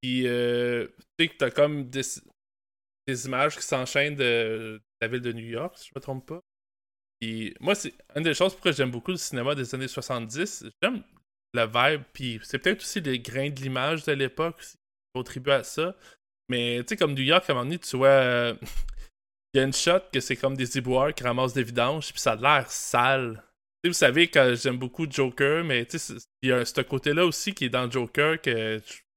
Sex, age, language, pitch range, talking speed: male, 20-39, French, 120-145 Hz, 225 wpm